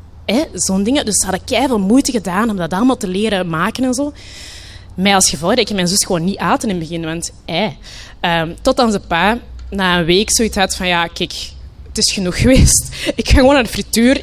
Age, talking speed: 20-39, 230 wpm